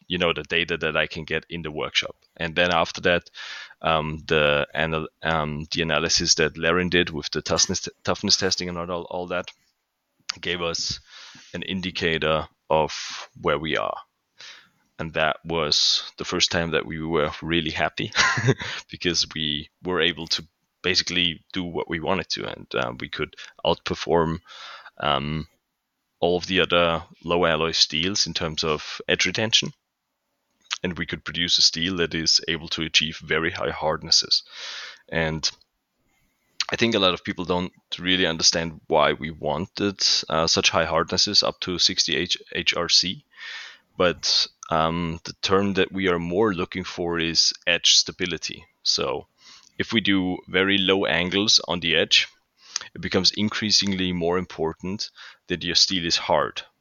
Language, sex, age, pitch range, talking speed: English, male, 20-39, 80-90 Hz, 160 wpm